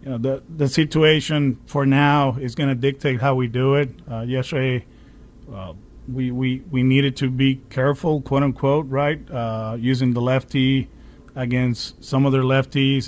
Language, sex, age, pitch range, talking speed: English, male, 30-49, 125-140 Hz, 165 wpm